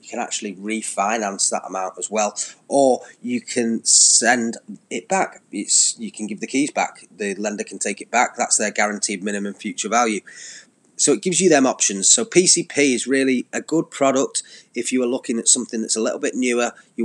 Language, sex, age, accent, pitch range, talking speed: English, male, 30-49, British, 105-125 Hz, 200 wpm